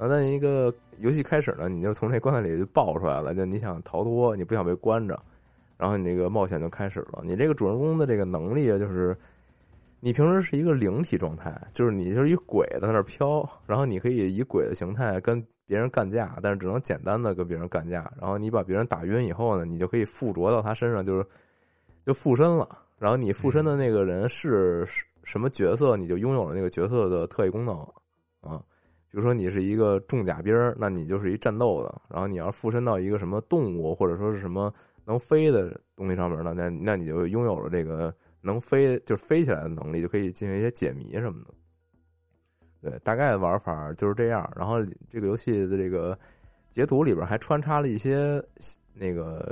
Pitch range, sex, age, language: 90-120 Hz, male, 20-39, Chinese